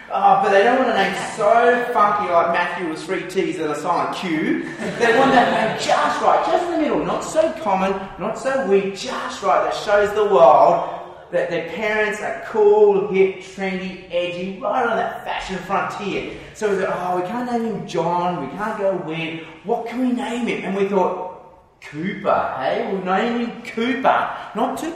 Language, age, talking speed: English, 30-49, 200 wpm